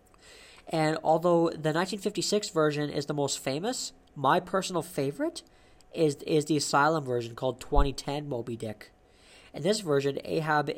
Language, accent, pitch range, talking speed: English, American, 135-160 Hz, 140 wpm